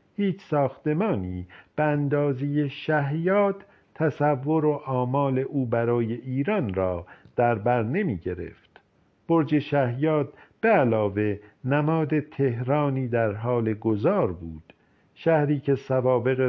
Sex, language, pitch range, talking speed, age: male, Persian, 110-145 Hz, 100 wpm, 50-69